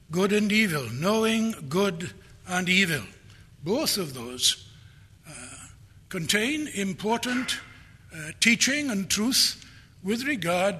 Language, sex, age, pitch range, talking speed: English, male, 60-79, 130-205 Hz, 105 wpm